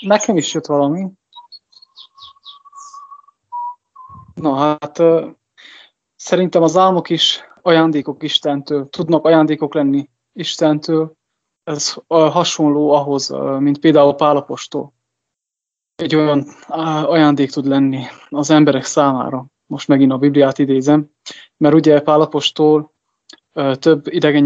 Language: English